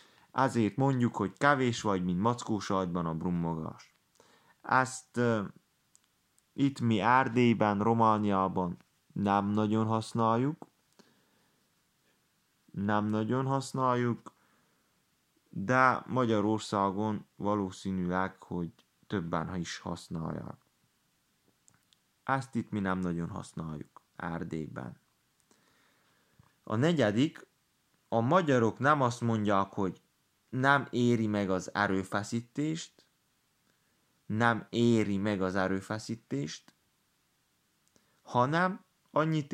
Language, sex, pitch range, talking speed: Hungarian, male, 100-130 Hz, 85 wpm